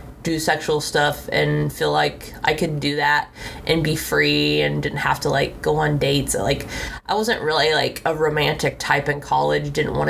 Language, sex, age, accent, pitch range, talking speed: English, female, 20-39, American, 145-225 Hz, 195 wpm